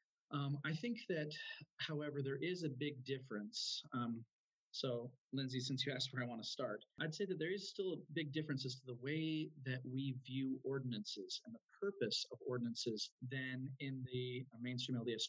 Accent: American